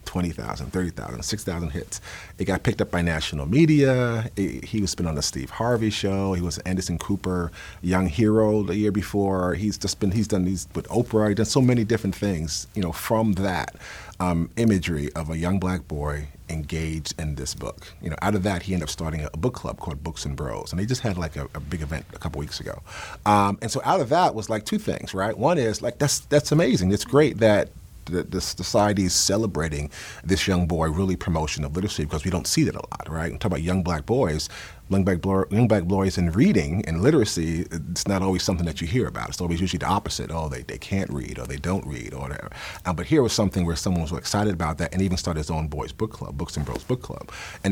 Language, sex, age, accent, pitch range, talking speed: English, male, 40-59, American, 80-105 Hz, 240 wpm